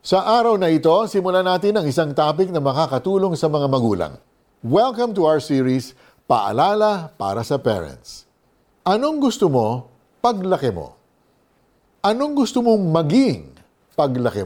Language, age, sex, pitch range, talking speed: Filipino, 50-69, male, 125-195 Hz, 135 wpm